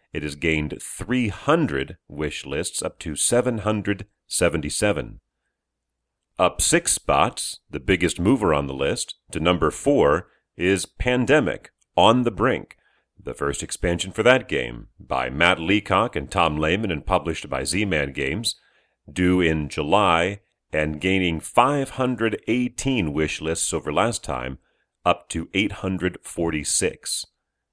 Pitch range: 75-110 Hz